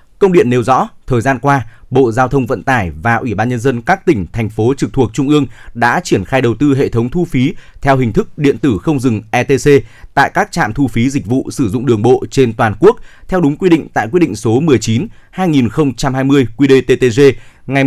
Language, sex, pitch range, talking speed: Vietnamese, male, 115-140 Hz, 220 wpm